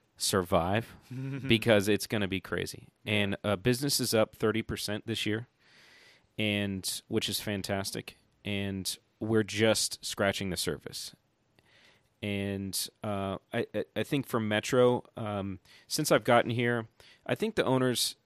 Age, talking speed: 30-49, 135 wpm